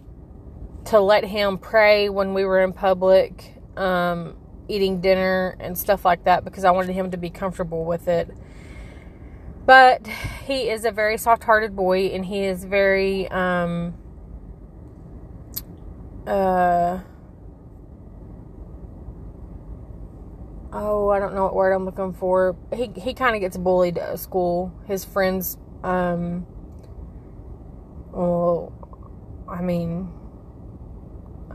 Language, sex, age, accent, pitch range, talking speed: English, female, 20-39, American, 175-195 Hz, 120 wpm